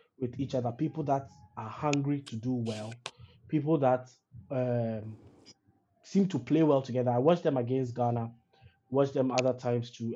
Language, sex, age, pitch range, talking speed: English, male, 20-39, 120-145 Hz, 165 wpm